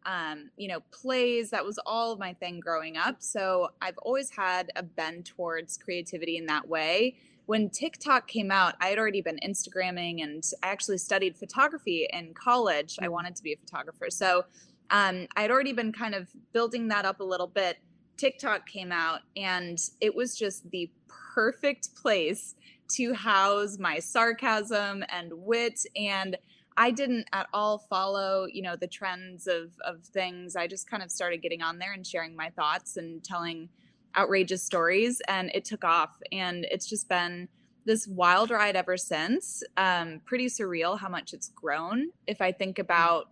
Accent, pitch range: American, 175-220 Hz